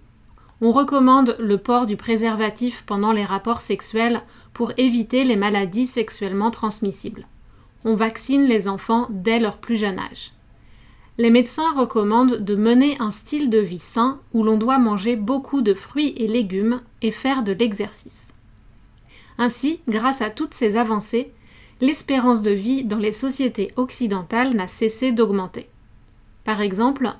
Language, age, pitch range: French, 30-49, 205-245 Hz